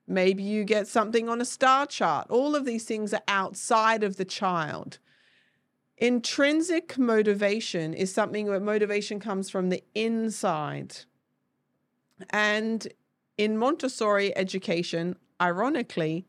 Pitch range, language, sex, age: 190-230 Hz, English, female, 40-59